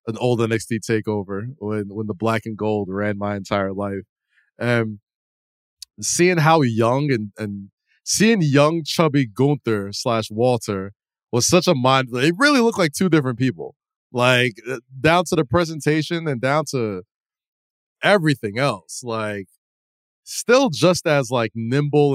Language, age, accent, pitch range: English, 20-39, American, 110-145 Hz